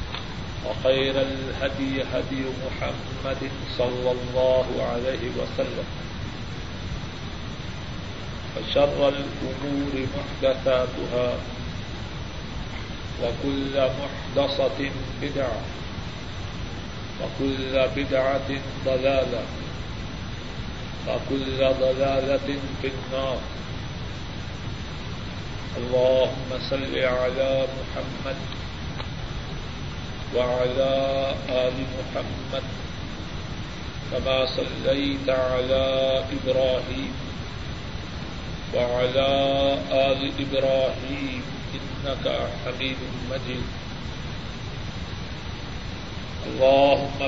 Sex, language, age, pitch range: male, Urdu, 40-59, 125-135 Hz